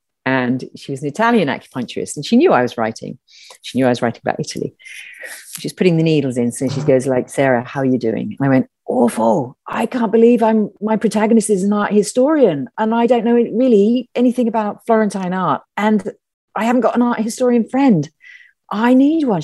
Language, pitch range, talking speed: English, 155-230 Hz, 205 wpm